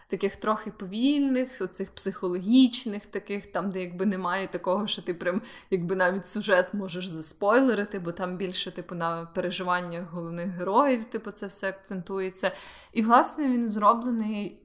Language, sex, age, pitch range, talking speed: Ukrainian, female, 20-39, 185-230 Hz, 145 wpm